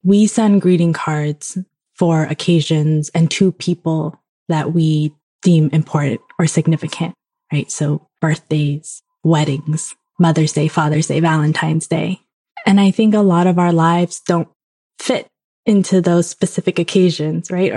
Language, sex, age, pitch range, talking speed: English, female, 20-39, 155-175 Hz, 135 wpm